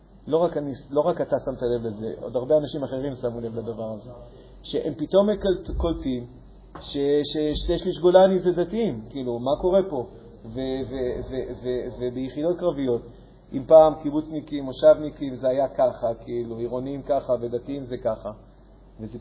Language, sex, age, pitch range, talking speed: Hebrew, male, 50-69, 130-175 Hz, 140 wpm